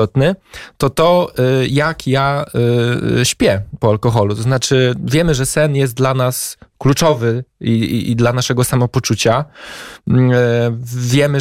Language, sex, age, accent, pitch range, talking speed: Polish, male, 20-39, native, 120-150 Hz, 120 wpm